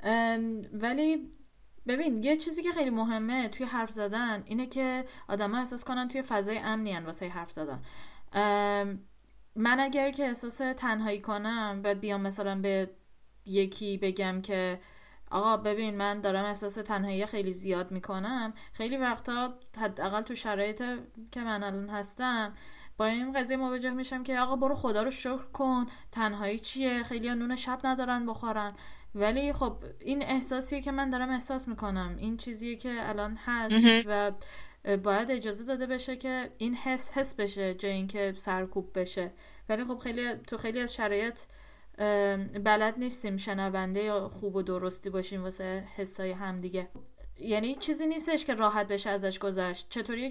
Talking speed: 150 wpm